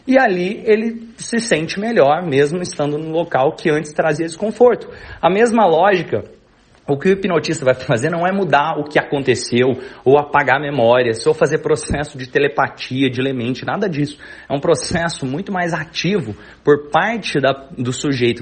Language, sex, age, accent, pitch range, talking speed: Portuguese, male, 30-49, Brazilian, 140-185 Hz, 175 wpm